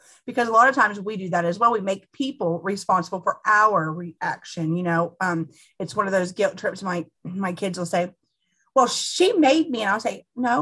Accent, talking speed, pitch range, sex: American, 220 wpm, 175-250 Hz, female